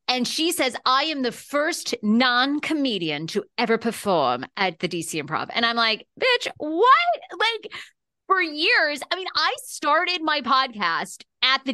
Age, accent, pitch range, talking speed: 40-59, American, 205-295 Hz, 160 wpm